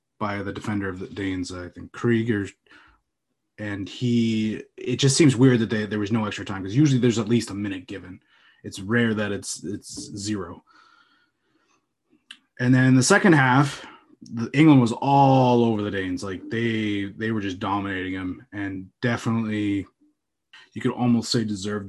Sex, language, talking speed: male, English, 170 wpm